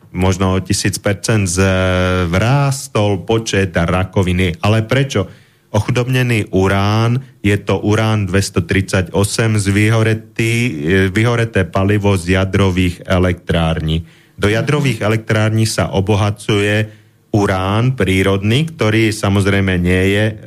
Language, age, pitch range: Slovak, 30-49, 95-115 Hz